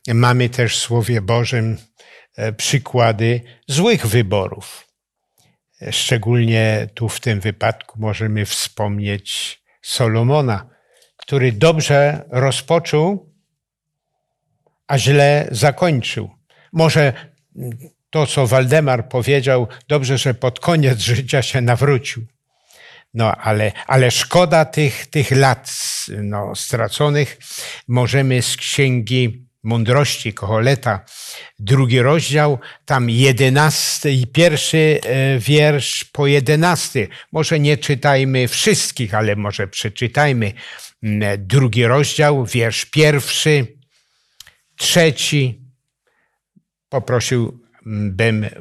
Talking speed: 85 wpm